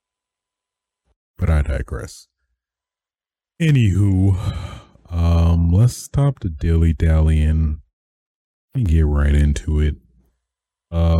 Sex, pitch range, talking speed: male, 70-90 Hz, 85 wpm